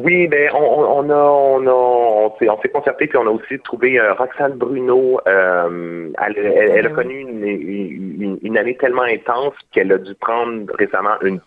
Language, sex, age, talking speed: French, male, 30-49, 195 wpm